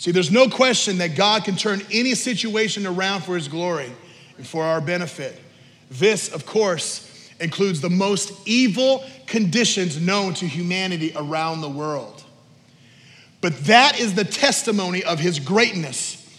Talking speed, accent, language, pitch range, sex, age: 145 wpm, American, English, 140-190 Hz, male, 40-59